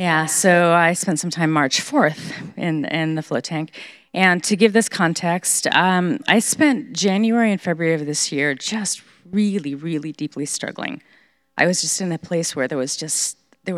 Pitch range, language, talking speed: 160-205 Hz, English, 185 wpm